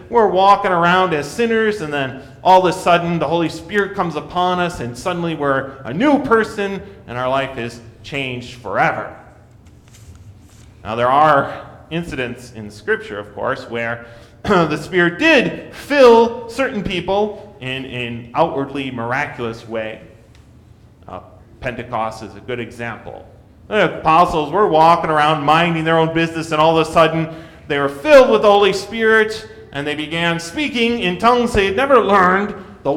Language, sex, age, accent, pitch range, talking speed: English, male, 30-49, American, 120-195 Hz, 155 wpm